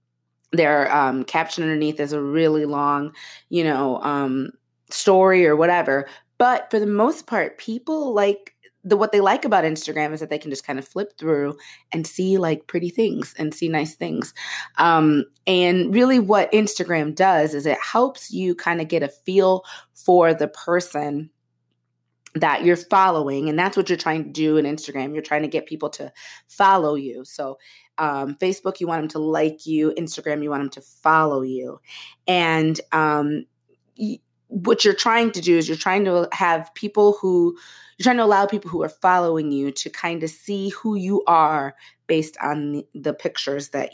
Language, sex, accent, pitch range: English, female, American, 145-185 Hz